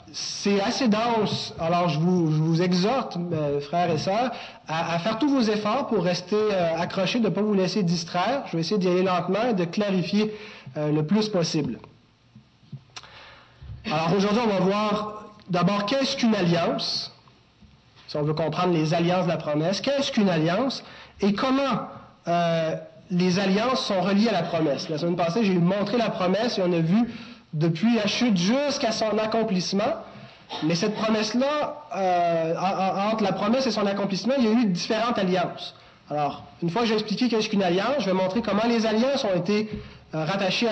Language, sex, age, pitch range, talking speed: French, male, 30-49, 170-215 Hz, 190 wpm